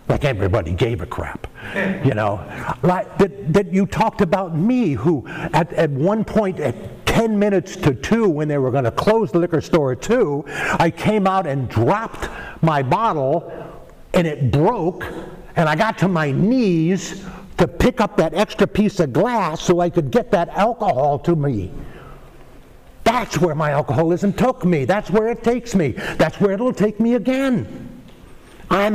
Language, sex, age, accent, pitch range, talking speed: English, male, 60-79, American, 165-225 Hz, 175 wpm